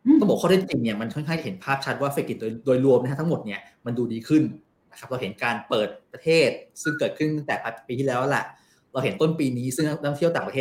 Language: Thai